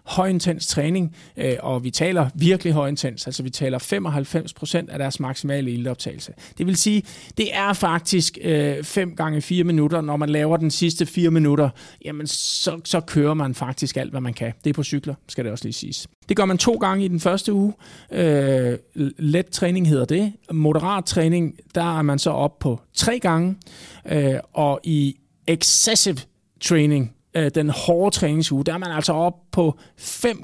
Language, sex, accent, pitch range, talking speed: Danish, male, native, 140-175 Hz, 175 wpm